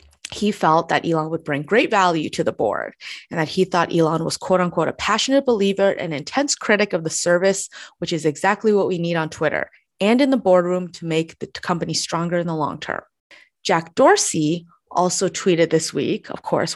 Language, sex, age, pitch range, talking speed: English, female, 20-39, 165-220 Hz, 205 wpm